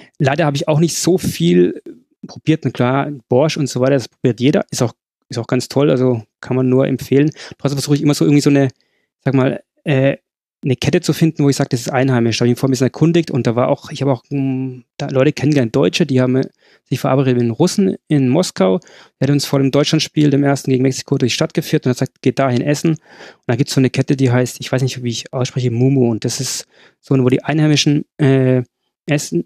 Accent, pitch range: German, 130-150 Hz